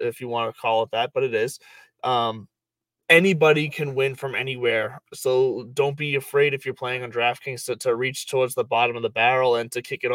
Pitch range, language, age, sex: 125-155 Hz, English, 20-39, male